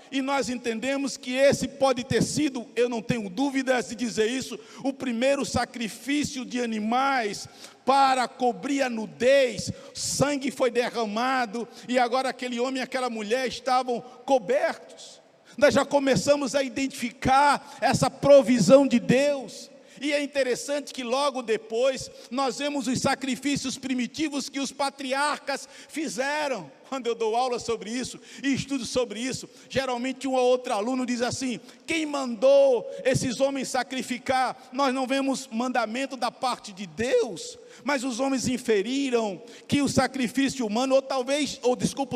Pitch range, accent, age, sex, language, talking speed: 240-270 Hz, Brazilian, 50-69, male, Portuguese, 145 wpm